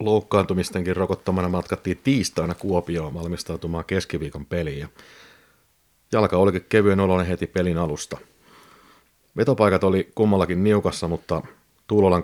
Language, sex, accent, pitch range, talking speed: Finnish, male, native, 80-95 Hz, 110 wpm